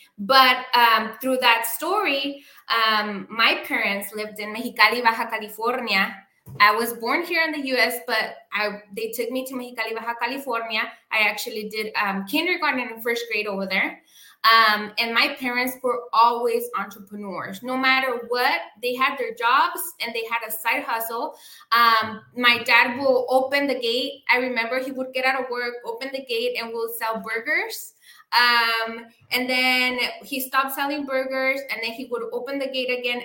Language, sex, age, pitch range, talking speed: English, female, 20-39, 225-270 Hz, 170 wpm